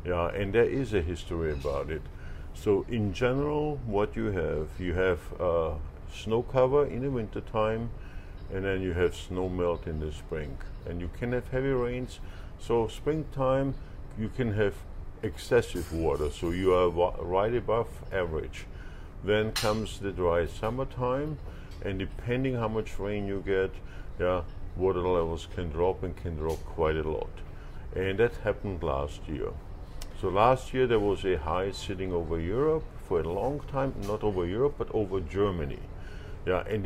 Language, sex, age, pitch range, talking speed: English, male, 50-69, 85-110 Hz, 170 wpm